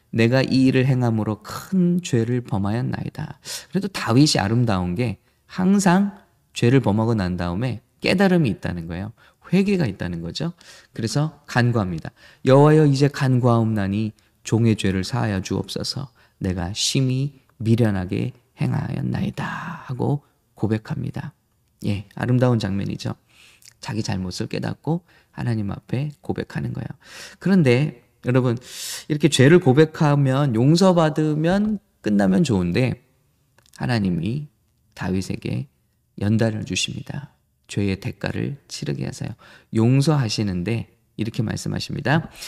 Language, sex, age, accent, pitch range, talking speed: English, male, 20-39, Korean, 105-145 Hz, 95 wpm